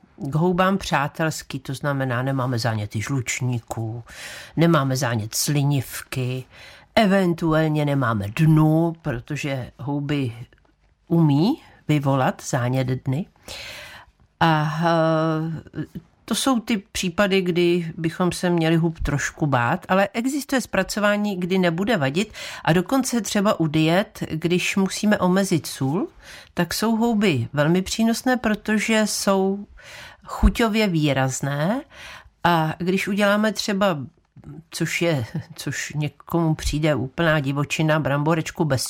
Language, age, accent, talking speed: Czech, 50-69, native, 105 wpm